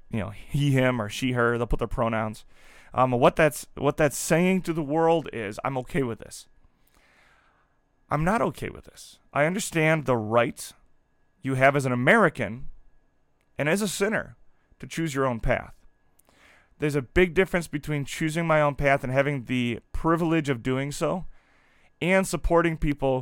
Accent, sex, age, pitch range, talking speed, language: American, male, 30-49, 125-155 Hz, 170 wpm, English